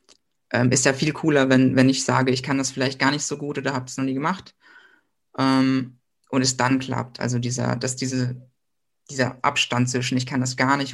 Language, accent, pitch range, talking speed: German, German, 130-145 Hz, 220 wpm